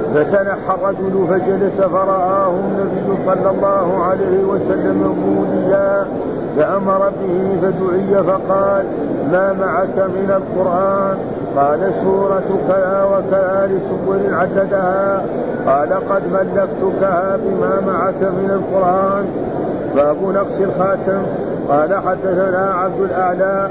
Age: 50-69